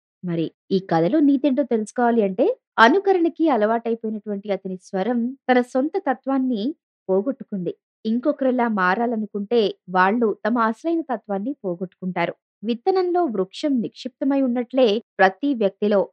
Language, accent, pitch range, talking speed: Telugu, native, 185-260 Hz, 100 wpm